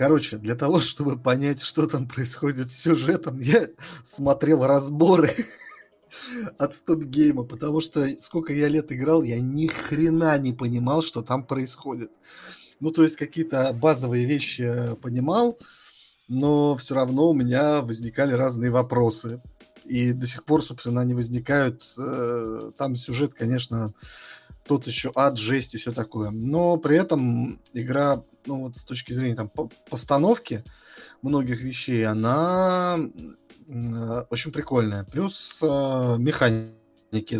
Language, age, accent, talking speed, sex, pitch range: Russian, 30-49, native, 130 wpm, male, 120-155 Hz